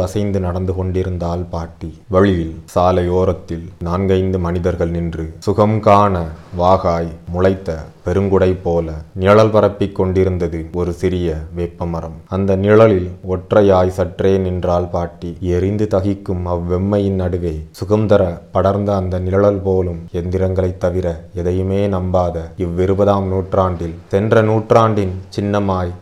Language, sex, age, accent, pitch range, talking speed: Tamil, male, 30-49, native, 85-95 Hz, 100 wpm